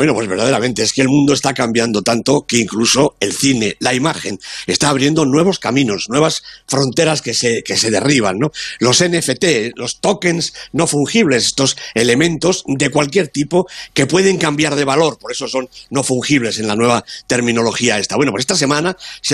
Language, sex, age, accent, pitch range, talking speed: Spanish, male, 60-79, Spanish, 120-160 Hz, 185 wpm